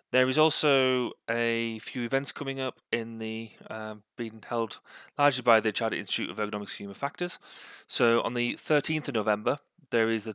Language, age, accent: English, 30-49, British